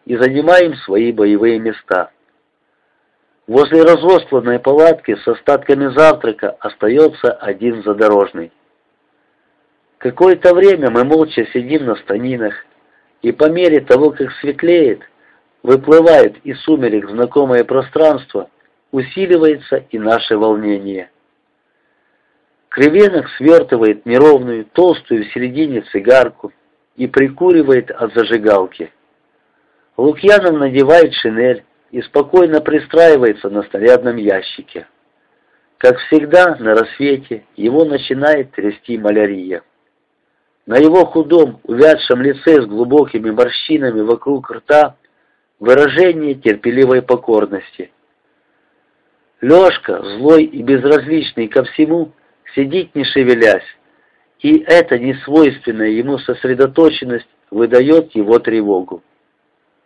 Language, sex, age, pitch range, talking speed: Russian, male, 50-69, 120-155 Hz, 95 wpm